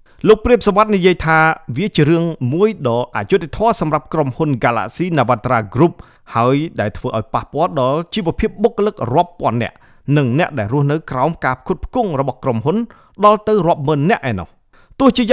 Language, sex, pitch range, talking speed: English, male, 125-185 Hz, 45 wpm